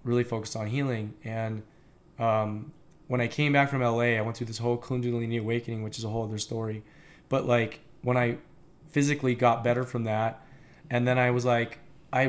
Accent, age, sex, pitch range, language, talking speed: American, 20-39, male, 120-145 Hz, English, 195 wpm